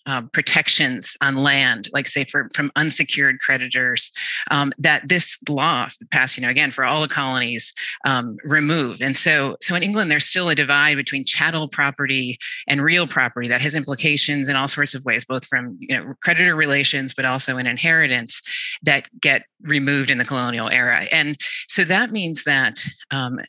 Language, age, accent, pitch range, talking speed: English, 30-49, American, 130-155 Hz, 180 wpm